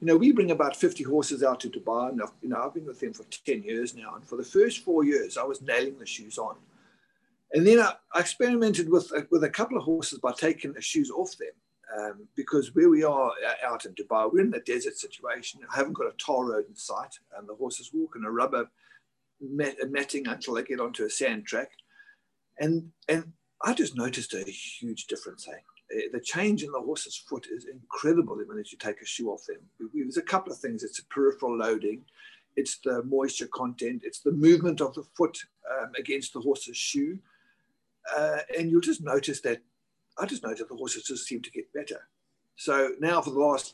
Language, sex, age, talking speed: English, male, 50-69, 220 wpm